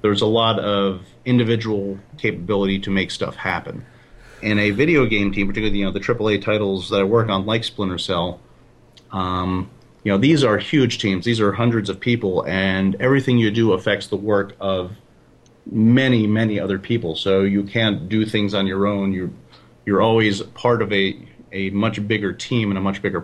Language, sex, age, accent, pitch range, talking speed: English, male, 30-49, American, 95-110 Hz, 195 wpm